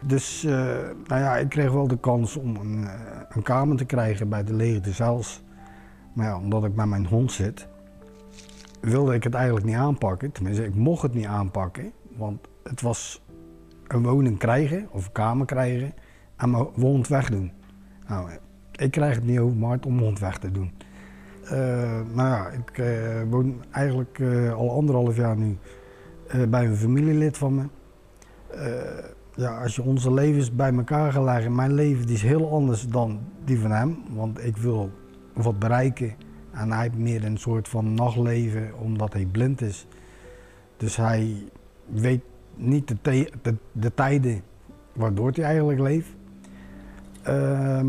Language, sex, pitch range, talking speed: Dutch, male, 105-130 Hz, 170 wpm